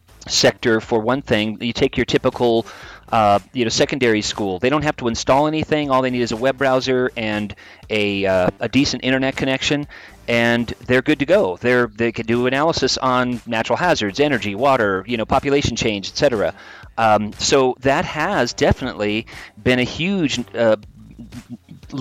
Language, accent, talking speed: English, American, 170 wpm